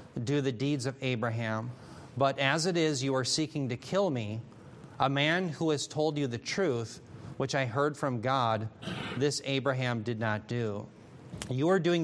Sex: male